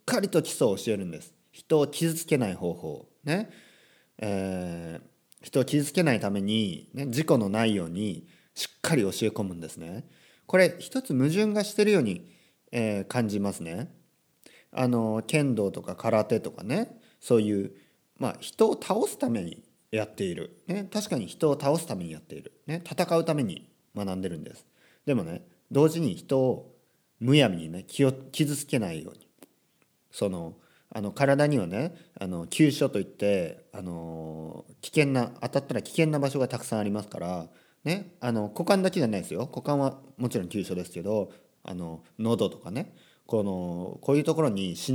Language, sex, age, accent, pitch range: Japanese, male, 40-59, native, 95-150 Hz